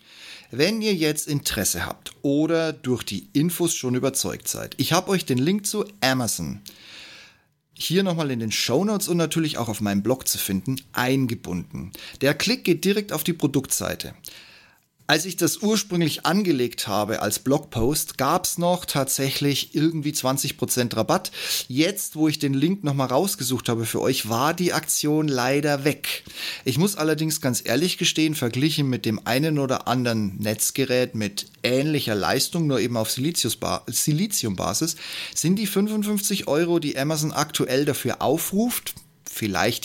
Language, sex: German, male